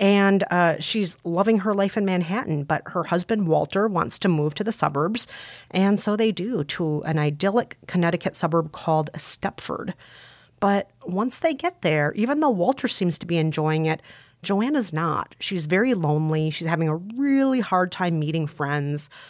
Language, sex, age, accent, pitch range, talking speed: English, female, 30-49, American, 160-215 Hz, 170 wpm